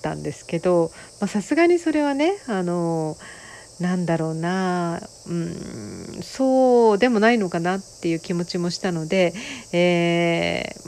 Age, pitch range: 40-59, 170-235 Hz